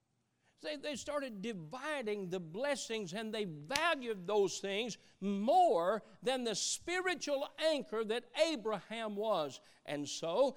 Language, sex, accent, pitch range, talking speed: English, male, American, 155-215 Hz, 115 wpm